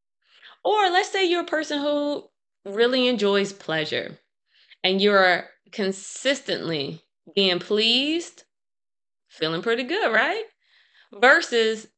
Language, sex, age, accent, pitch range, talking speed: English, female, 20-39, American, 175-230 Hz, 100 wpm